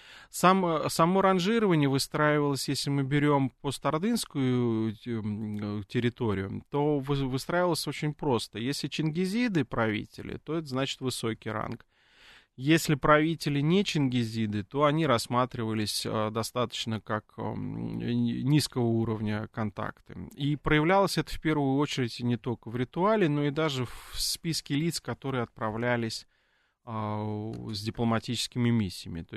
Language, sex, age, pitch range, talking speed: Russian, male, 30-49, 110-140 Hz, 110 wpm